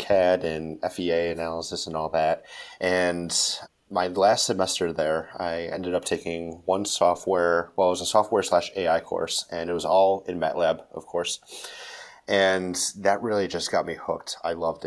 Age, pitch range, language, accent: 30-49, 85-90 Hz, English, American